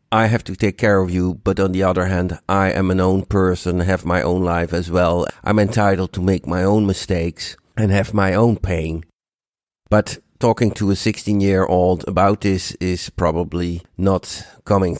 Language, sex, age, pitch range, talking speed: English, male, 50-69, 90-110 Hz, 185 wpm